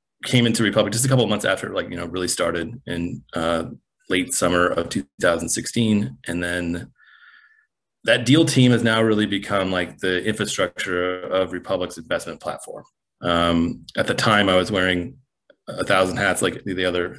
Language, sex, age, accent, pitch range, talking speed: English, male, 30-49, American, 90-110 Hz, 170 wpm